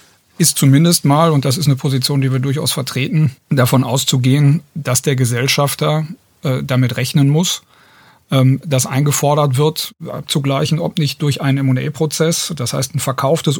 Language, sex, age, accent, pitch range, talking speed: German, male, 40-59, German, 130-150 Hz, 165 wpm